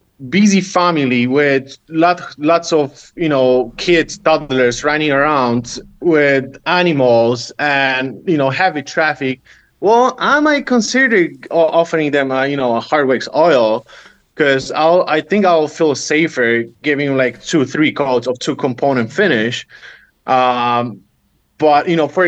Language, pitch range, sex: English, 130-160 Hz, male